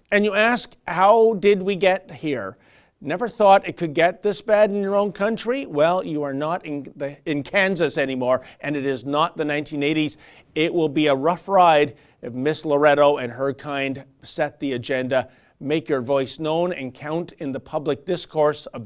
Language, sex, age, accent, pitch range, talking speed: English, male, 50-69, American, 140-195 Hz, 190 wpm